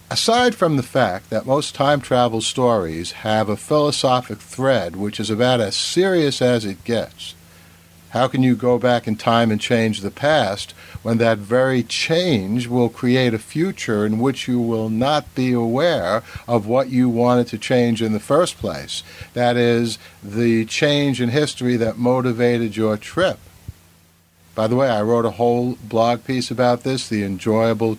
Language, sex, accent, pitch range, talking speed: English, male, American, 100-130 Hz, 170 wpm